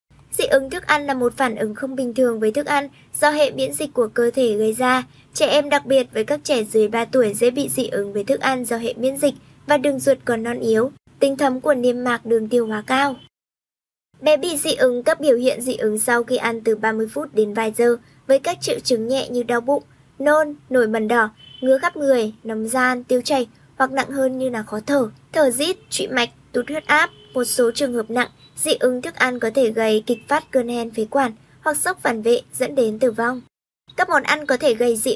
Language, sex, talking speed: Vietnamese, male, 245 wpm